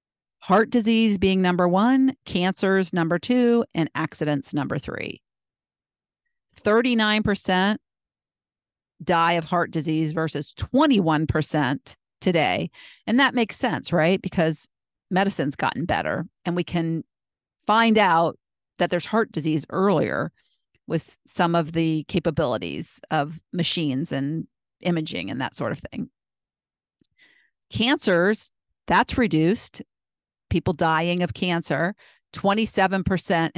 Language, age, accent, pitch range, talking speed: English, 50-69, American, 165-215 Hz, 110 wpm